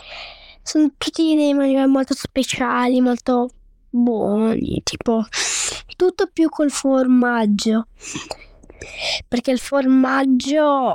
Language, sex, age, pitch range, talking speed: Italian, female, 10-29, 240-305 Hz, 90 wpm